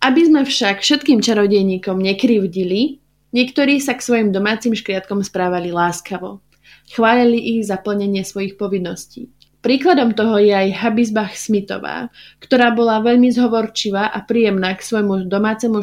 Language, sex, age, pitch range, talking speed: Slovak, female, 20-39, 190-240 Hz, 135 wpm